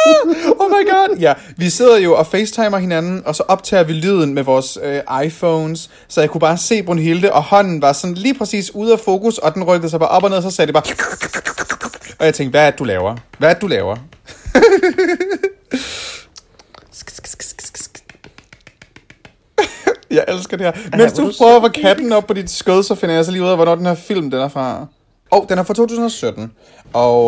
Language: Danish